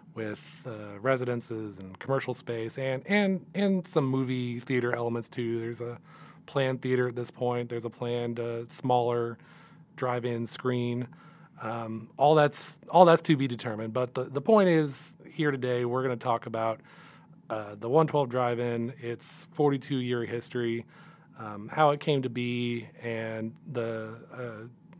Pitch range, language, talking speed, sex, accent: 115-140 Hz, English, 155 wpm, male, American